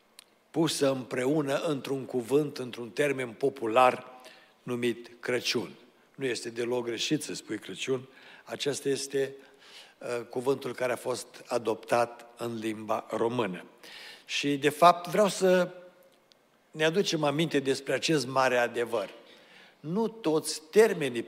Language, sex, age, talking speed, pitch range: Romanian, male, 60-79, 115 wpm, 120-140 Hz